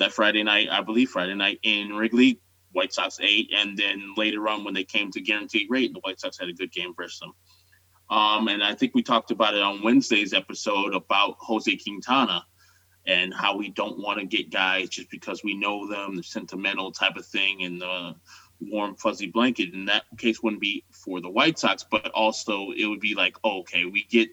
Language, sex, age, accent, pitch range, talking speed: English, male, 20-39, American, 95-110 Hz, 210 wpm